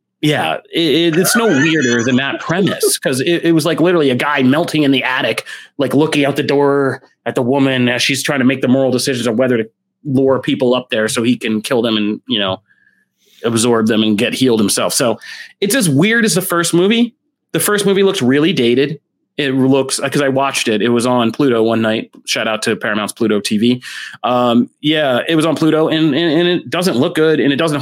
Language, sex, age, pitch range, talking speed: English, male, 30-49, 120-160 Hz, 220 wpm